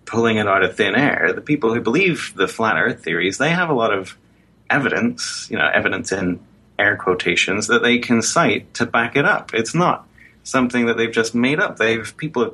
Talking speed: 215 wpm